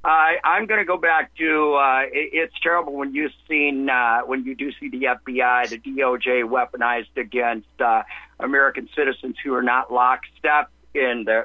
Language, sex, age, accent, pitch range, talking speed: English, male, 50-69, American, 125-155 Hz, 180 wpm